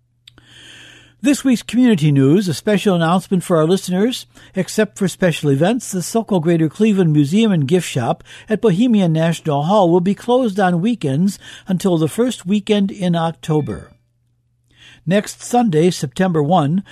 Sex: male